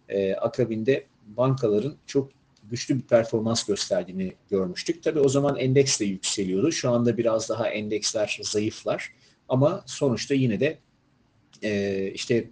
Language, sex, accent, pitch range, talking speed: Turkish, male, native, 110-135 Hz, 120 wpm